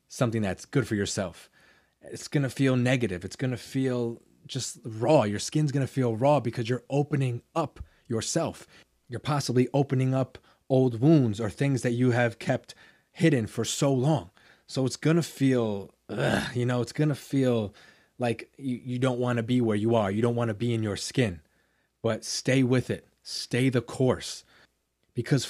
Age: 20-39